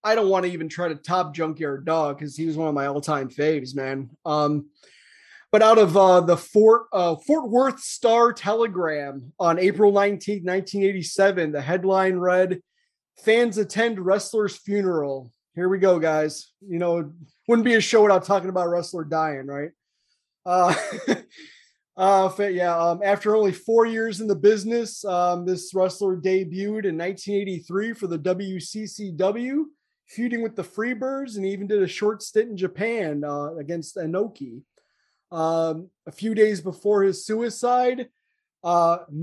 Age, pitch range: 30-49, 160-205 Hz